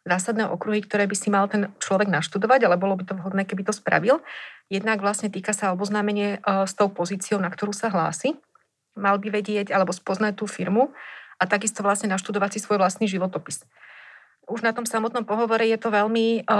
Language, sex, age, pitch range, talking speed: Slovak, female, 30-49, 195-215 Hz, 190 wpm